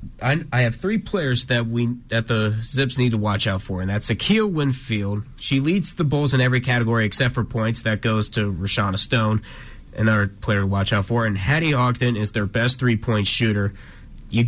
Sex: male